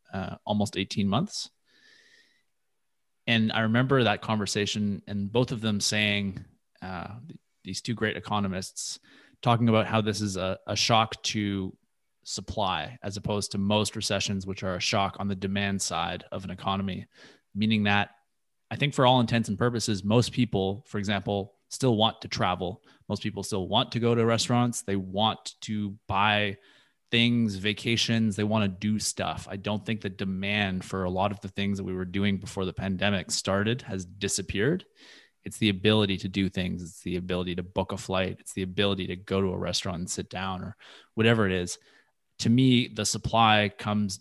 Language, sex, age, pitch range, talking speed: English, male, 20-39, 95-110 Hz, 185 wpm